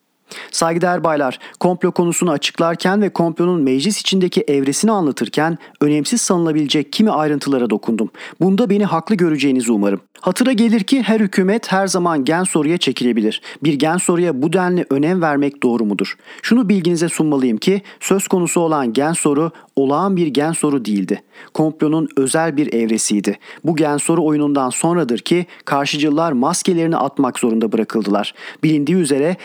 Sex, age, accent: male, 40-59, native